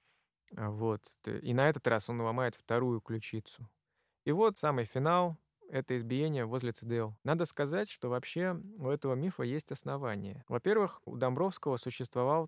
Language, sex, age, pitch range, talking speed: Russian, male, 20-39, 120-150 Hz, 145 wpm